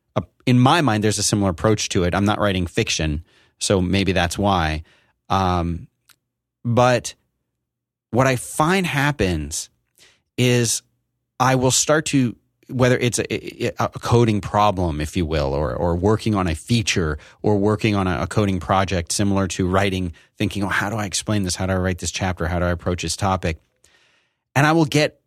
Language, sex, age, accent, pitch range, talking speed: English, male, 30-49, American, 95-125 Hz, 180 wpm